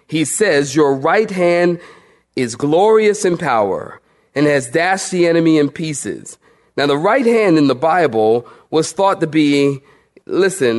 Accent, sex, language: American, male, English